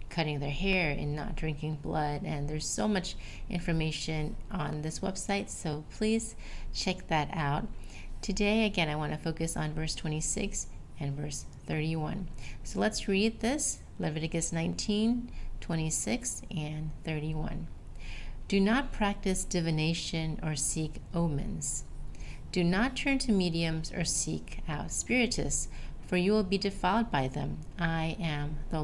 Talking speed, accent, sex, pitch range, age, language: 140 wpm, American, female, 150-185 Hz, 40-59, English